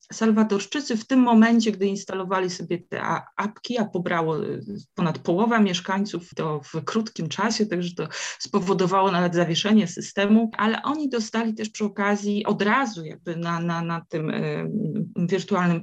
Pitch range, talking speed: 170-215 Hz, 145 wpm